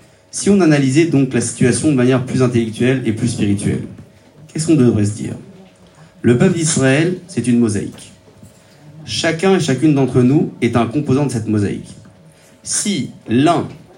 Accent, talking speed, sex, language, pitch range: French, 160 wpm, male, French, 110-135 Hz